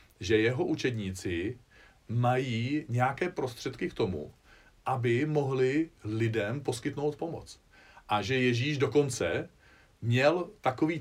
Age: 40-59